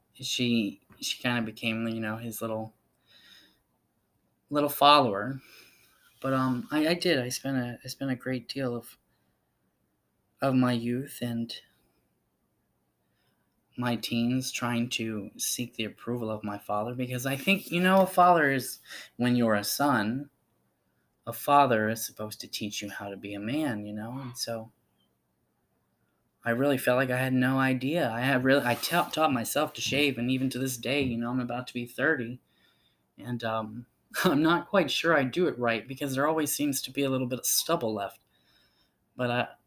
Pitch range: 115-140 Hz